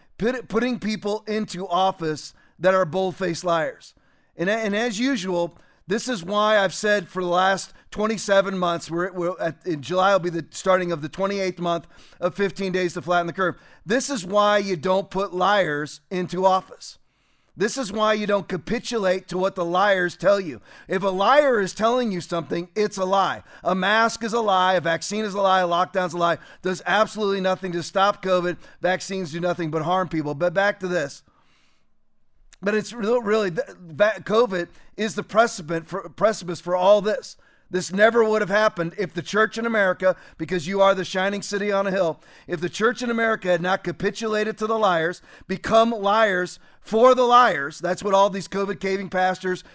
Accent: American